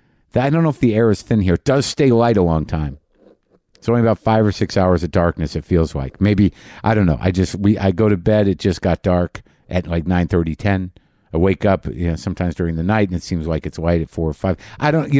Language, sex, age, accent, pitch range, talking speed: English, male, 50-69, American, 90-115 Hz, 275 wpm